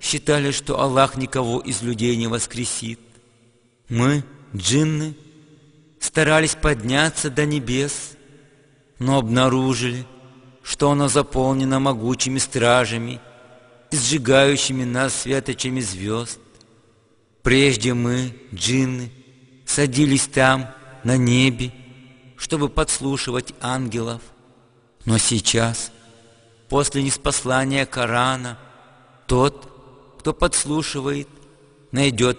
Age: 50-69